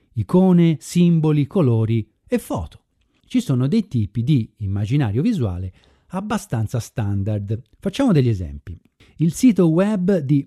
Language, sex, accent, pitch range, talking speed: Italian, male, native, 105-175 Hz, 120 wpm